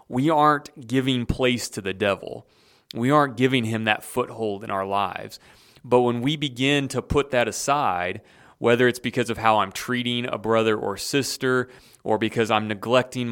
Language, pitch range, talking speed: English, 105-125 Hz, 175 wpm